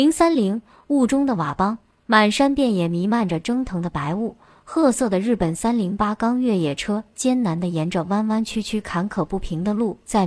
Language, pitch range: Chinese, 185-250 Hz